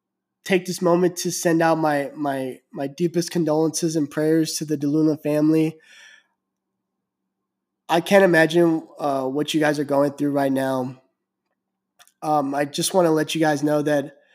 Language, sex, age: English, male, 20-39